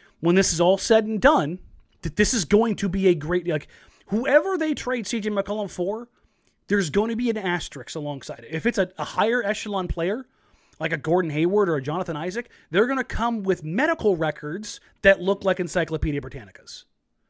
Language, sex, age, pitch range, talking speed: English, male, 30-49, 170-235 Hz, 200 wpm